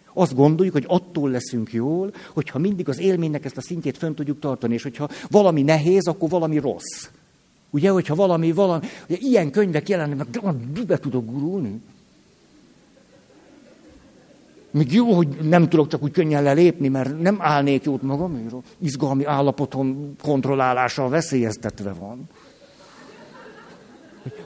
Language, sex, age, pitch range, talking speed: Hungarian, male, 60-79, 130-180 Hz, 135 wpm